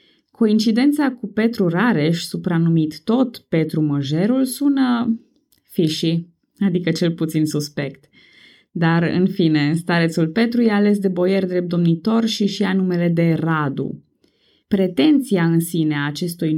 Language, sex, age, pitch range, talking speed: Romanian, female, 20-39, 165-225 Hz, 125 wpm